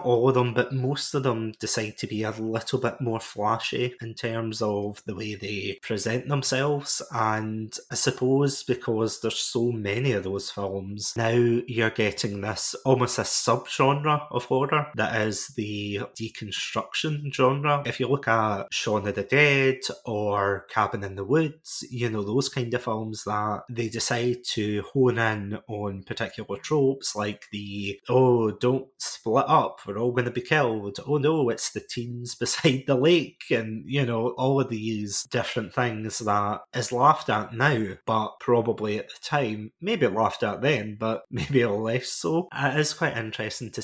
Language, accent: English, British